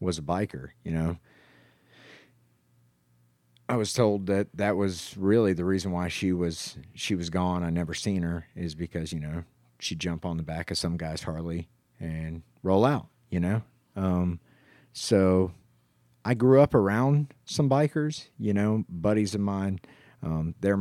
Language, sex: English, male